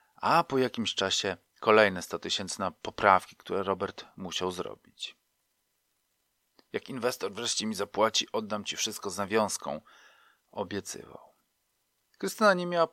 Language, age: Polish, 40-59